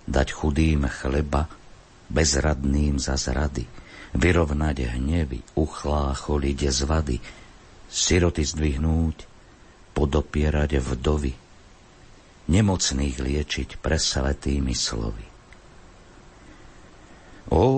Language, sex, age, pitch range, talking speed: Slovak, male, 50-69, 65-85 Hz, 65 wpm